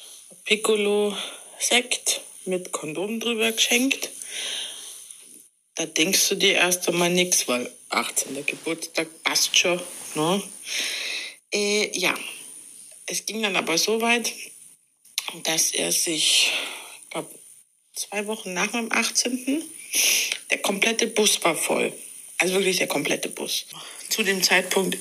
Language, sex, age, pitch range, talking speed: German, female, 60-79, 180-220 Hz, 115 wpm